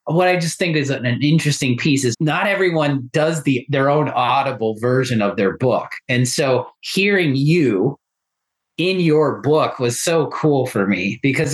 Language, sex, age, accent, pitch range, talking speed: English, male, 30-49, American, 125-160 Hz, 175 wpm